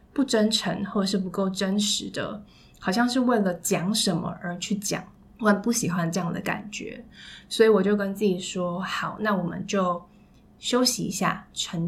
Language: Chinese